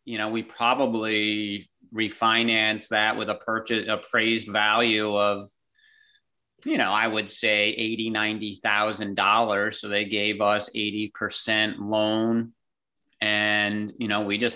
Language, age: English, 30-49